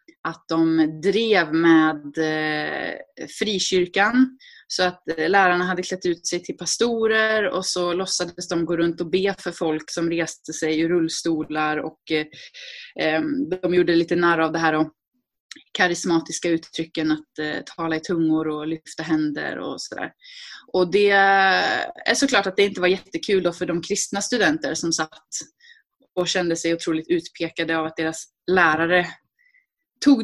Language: Swedish